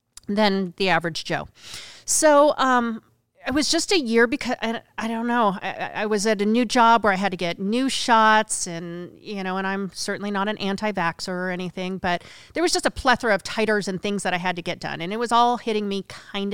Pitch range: 180-220 Hz